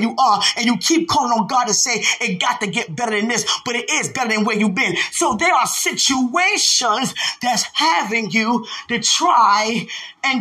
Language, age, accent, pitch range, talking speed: English, 20-39, American, 220-290 Hz, 200 wpm